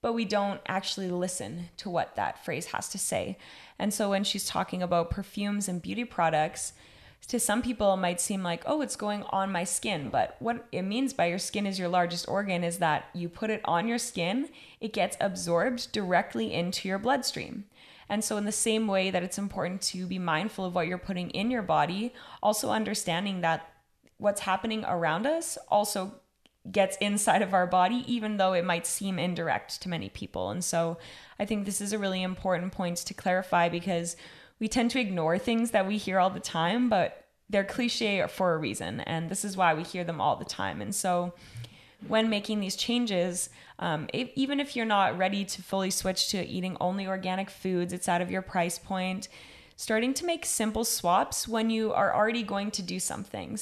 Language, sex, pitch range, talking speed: English, female, 180-215 Hz, 205 wpm